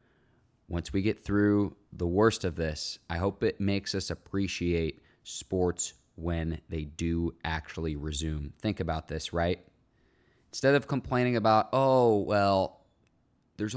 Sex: male